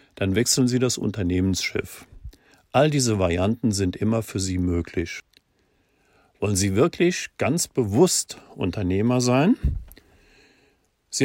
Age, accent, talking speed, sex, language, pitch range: 50-69, German, 110 wpm, male, German, 95-130 Hz